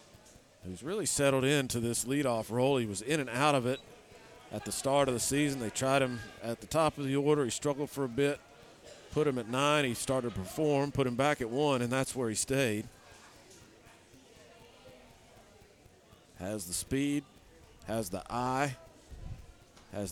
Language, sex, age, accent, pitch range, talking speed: English, male, 40-59, American, 110-145 Hz, 175 wpm